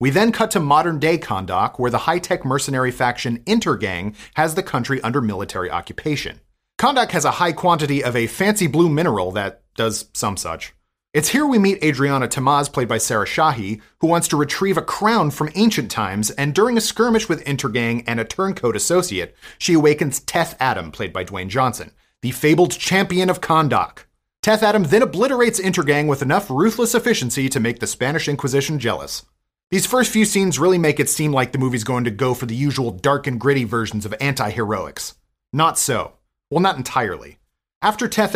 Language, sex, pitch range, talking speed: English, male, 120-180 Hz, 185 wpm